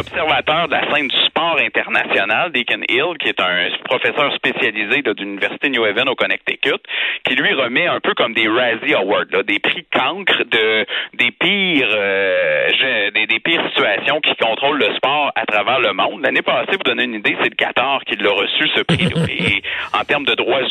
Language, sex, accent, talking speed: French, male, Canadian, 200 wpm